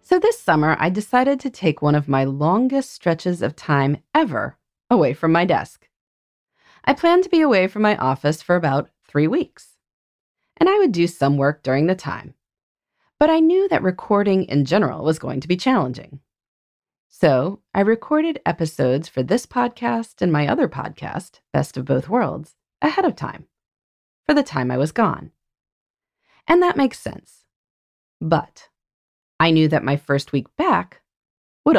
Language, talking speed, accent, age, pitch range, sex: English, 170 wpm, American, 30-49, 145-240 Hz, female